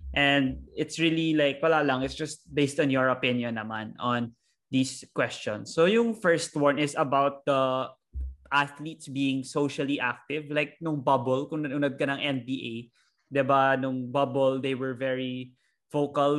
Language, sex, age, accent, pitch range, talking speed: Filipino, male, 20-39, native, 130-145 Hz, 155 wpm